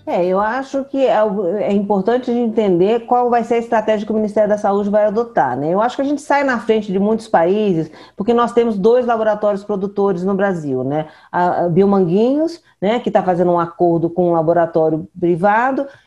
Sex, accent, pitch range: female, Brazilian, 190-240 Hz